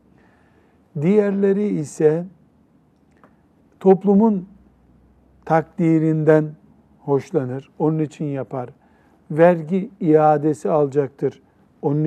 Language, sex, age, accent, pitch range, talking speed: Turkish, male, 60-79, native, 150-185 Hz, 60 wpm